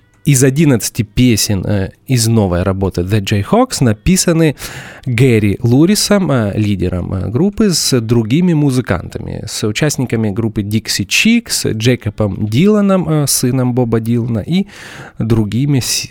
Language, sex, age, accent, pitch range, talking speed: Russian, male, 30-49, native, 105-150 Hz, 105 wpm